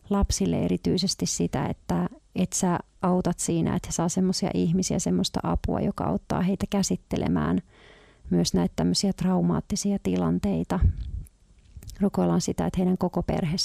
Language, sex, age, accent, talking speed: Finnish, female, 30-49, native, 130 wpm